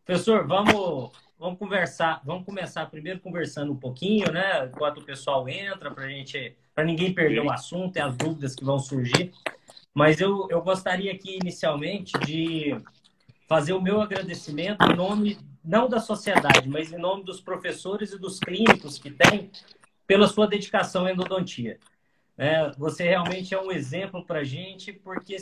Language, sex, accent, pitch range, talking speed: Portuguese, male, Brazilian, 160-195 Hz, 160 wpm